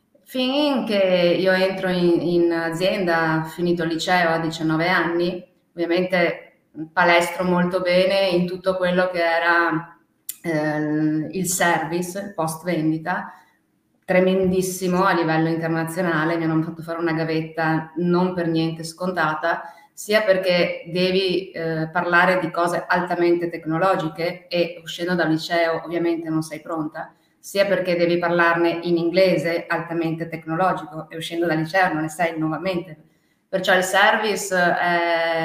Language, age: Italian, 20-39